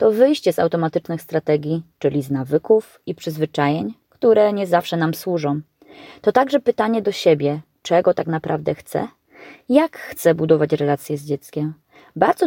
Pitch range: 150-210 Hz